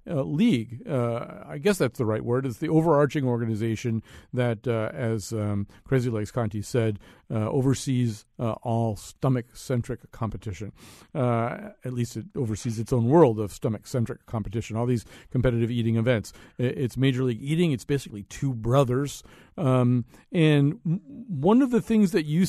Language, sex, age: English, male, 50-69